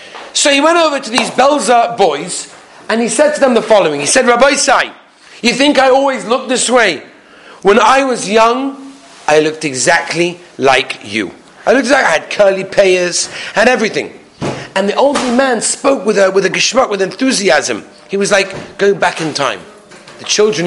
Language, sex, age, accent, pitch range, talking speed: English, male, 40-59, British, 155-225 Hz, 190 wpm